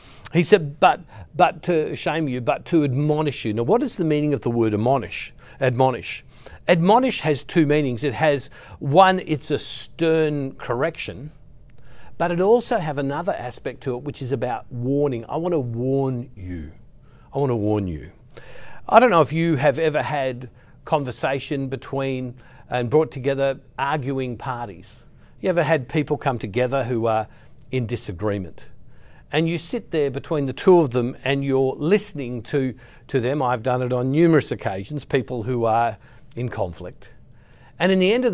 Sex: male